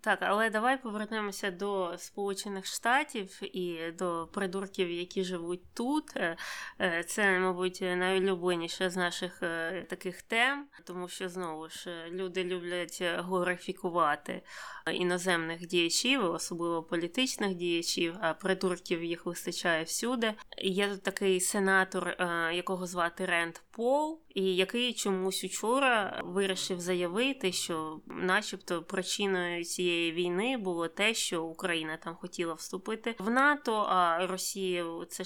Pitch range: 170-200 Hz